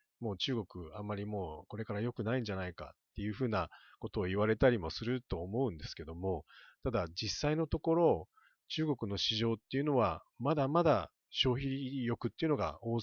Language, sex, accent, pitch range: Japanese, male, native, 100-135 Hz